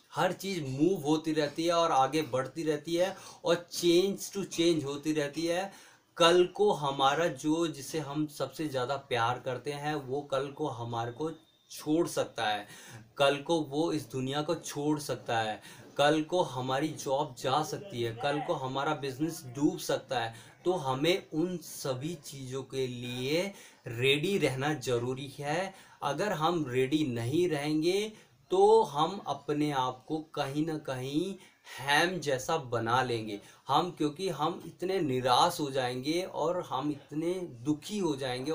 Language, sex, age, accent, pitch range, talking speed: Hindi, male, 30-49, native, 135-170 Hz, 155 wpm